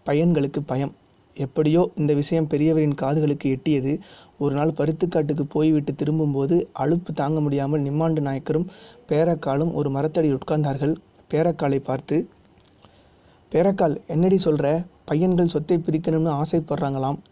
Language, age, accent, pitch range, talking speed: Tamil, 20-39, native, 145-165 Hz, 105 wpm